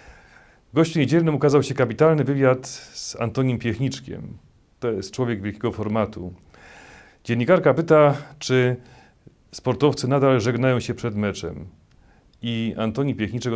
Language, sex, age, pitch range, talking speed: Polish, male, 40-59, 105-135 Hz, 115 wpm